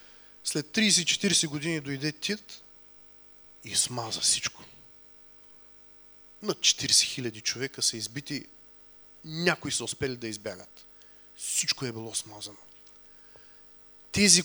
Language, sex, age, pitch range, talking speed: English, male, 30-49, 110-145 Hz, 100 wpm